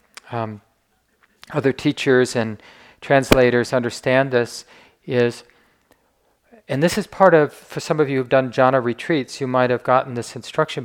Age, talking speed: 40-59, 150 wpm